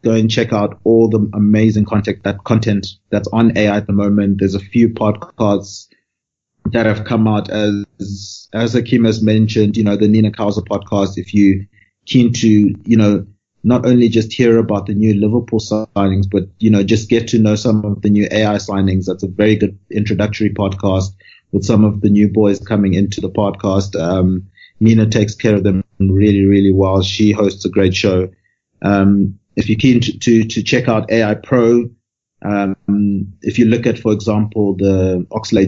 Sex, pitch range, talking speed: male, 100-110 Hz, 190 wpm